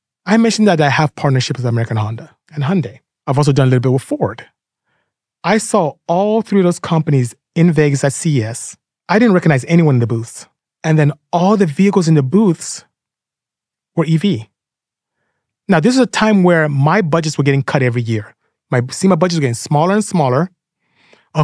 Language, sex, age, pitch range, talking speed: English, male, 30-49, 130-175 Hz, 195 wpm